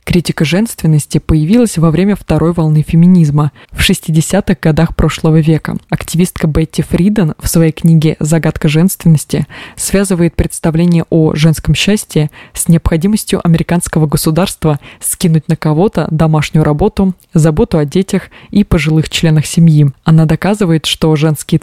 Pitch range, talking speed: 155-180 Hz, 130 wpm